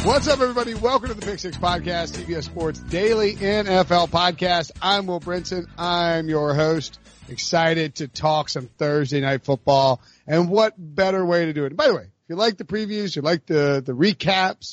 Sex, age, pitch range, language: male, 40-59, 145-185 Hz, English